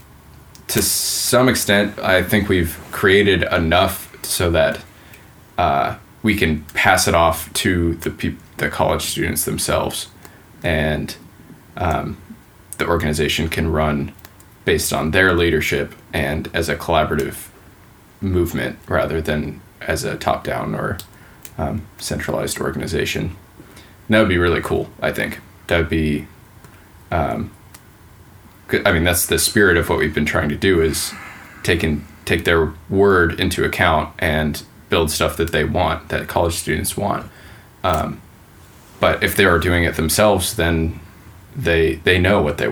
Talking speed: 140 wpm